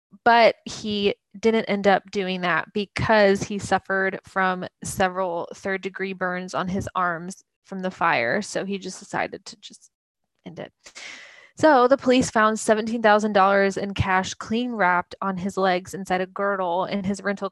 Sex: female